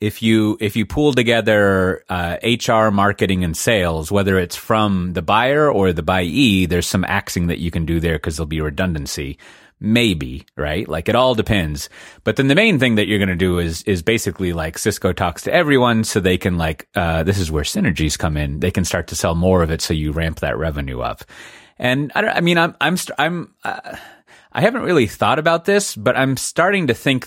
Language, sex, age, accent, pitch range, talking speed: English, male, 30-49, American, 85-115 Hz, 220 wpm